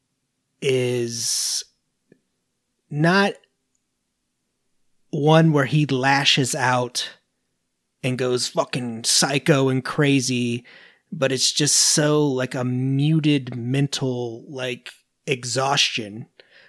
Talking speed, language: 85 wpm, English